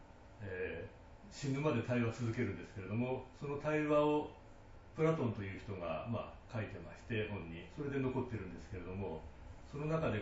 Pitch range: 95-125 Hz